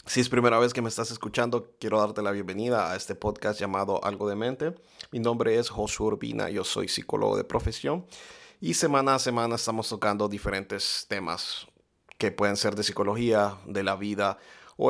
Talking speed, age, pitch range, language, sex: 185 wpm, 30-49, 105-120 Hz, Spanish, male